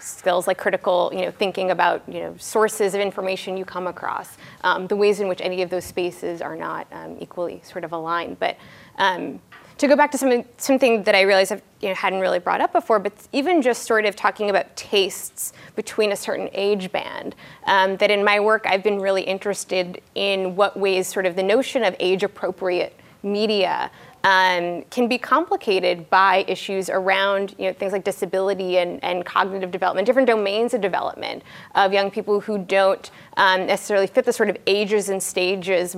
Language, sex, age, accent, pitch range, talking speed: English, female, 20-39, American, 185-215 Hz, 190 wpm